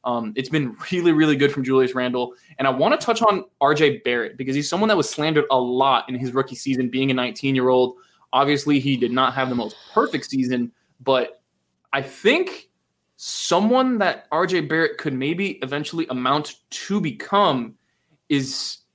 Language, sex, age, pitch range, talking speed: English, male, 20-39, 130-170 Hz, 175 wpm